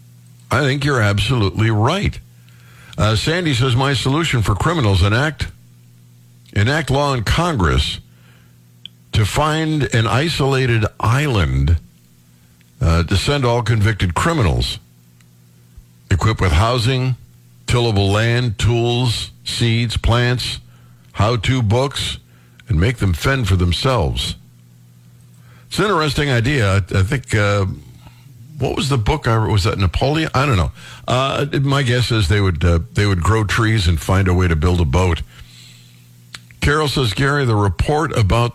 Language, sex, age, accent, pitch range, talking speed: English, male, 60-79, American, 80-120 Hz, 135 wpm